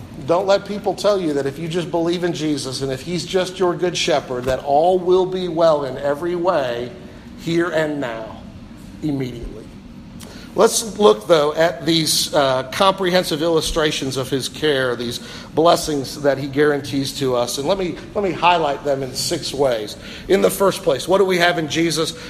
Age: 50-69